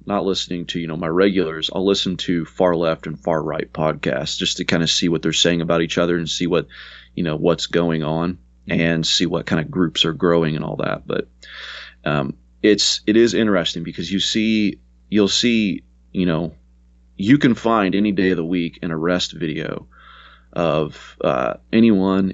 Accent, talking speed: American, 195 wpm